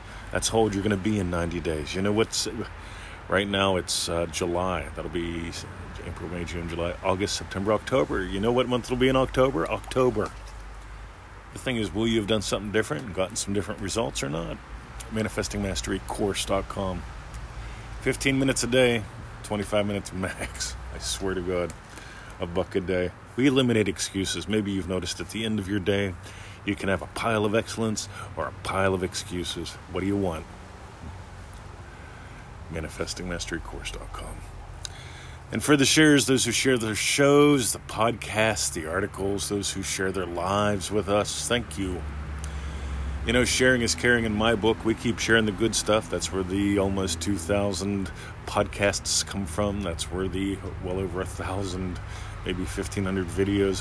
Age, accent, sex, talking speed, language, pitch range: 40-59, American, male, 165 wpm, English, 90-110 Hz